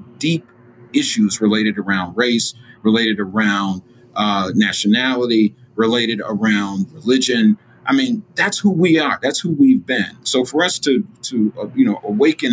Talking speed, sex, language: 150 wpm, male, English